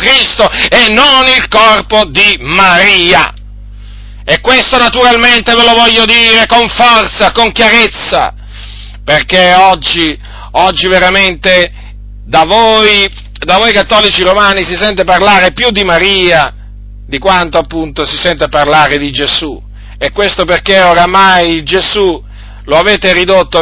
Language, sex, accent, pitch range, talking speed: Italian, male, native, 150-190 Hz, 125 wpm